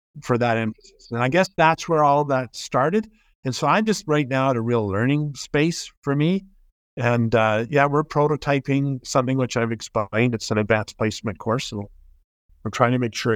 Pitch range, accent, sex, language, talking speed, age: 105-145 Hz, American, male, English, 200 wpm, 50-69